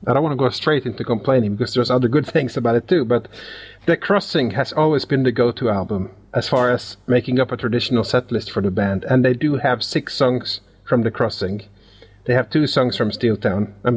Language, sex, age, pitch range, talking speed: English, male, 30-49, 105-130 Hz, 230 wpm